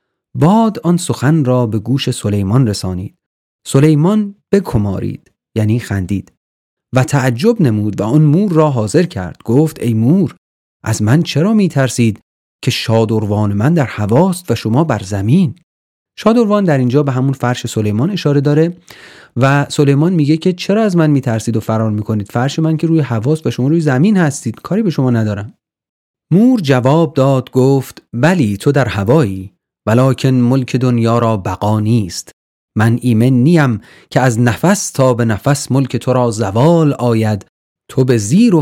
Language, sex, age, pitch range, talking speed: Persian, male, 40-59, 110-155 Hz, 155 wpm